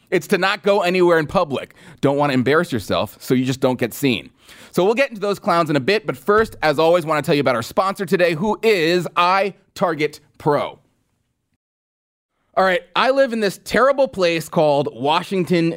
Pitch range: 125-175 Hz